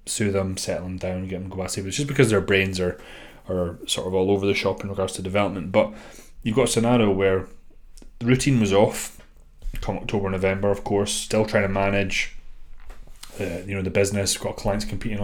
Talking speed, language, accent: 215 wpm, English, British